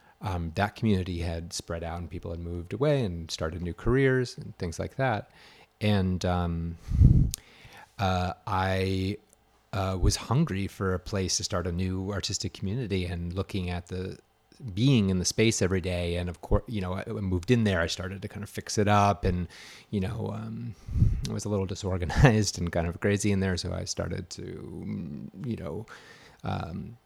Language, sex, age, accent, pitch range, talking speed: English, male, 30-49, American, 90-110 Hz, 190 wpm